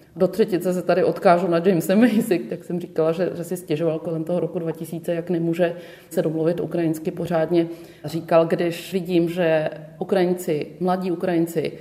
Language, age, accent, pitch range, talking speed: Czech, 30-49, native, 165-185 Hz, 160 wpm